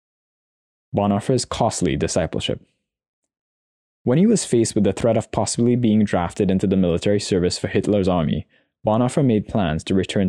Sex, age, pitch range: male, 20-39, 95-125 Hz